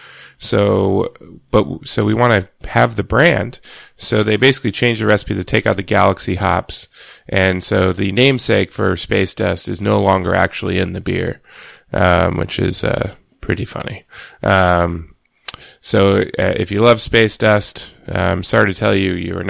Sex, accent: male, American